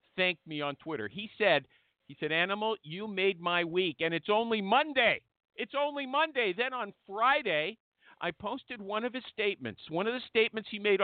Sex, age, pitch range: male, 50-69, 200-265 Hz